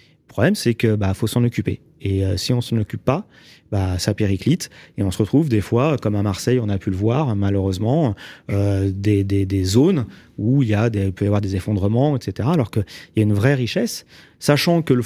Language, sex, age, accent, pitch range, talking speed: French, male, 30-49, French, 105-135 Hz, 225 wpm